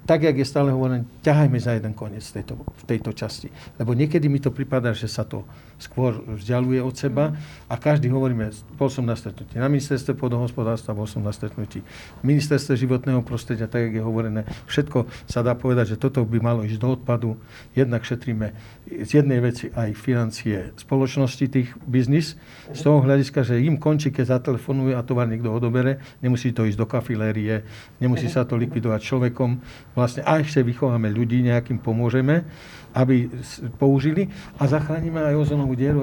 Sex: male